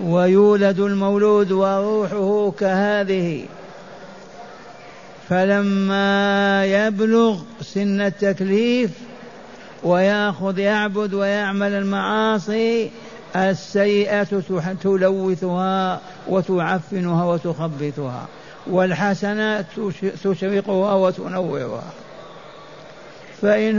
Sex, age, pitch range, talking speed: male, 60-79, 165-200 Hz, 50 wpm